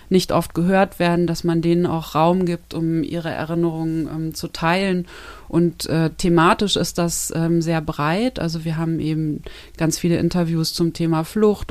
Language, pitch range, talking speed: German, 160-175 Hz, 175 wpm